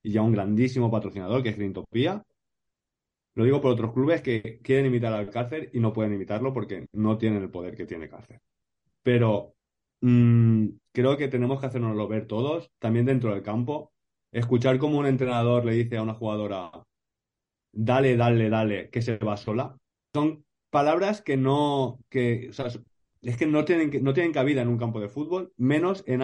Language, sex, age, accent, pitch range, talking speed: Spanish, male, 30-49, Spanish, 115-140 Hz, 185 wpm